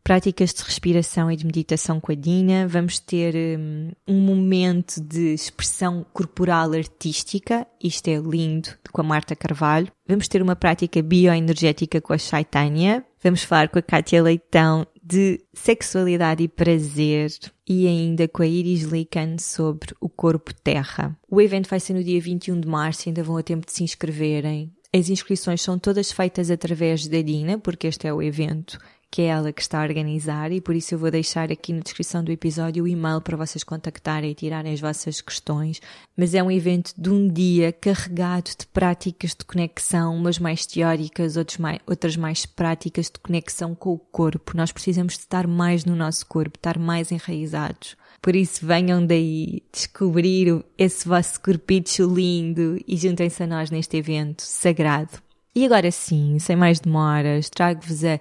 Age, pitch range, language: 20-39, 160-180 Hz, Portuguese